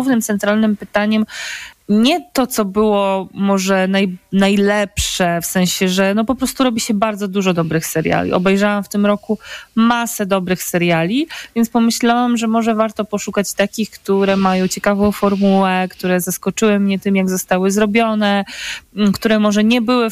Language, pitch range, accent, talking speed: Polish, 190-220 Hz, native, 150 wpm